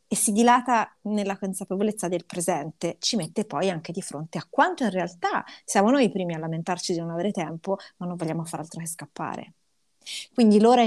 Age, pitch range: 30-49, 175-210 Hz